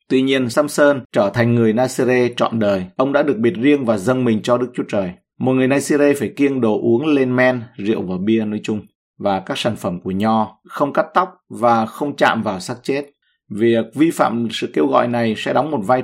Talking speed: 230 wpm